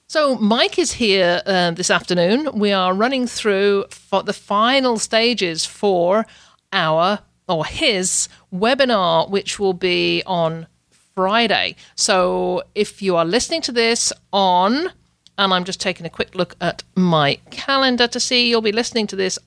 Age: 50-69